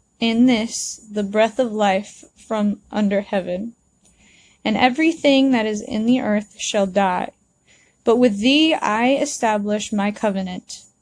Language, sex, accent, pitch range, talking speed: English, female, American, 210-270 Hz, 135 wpm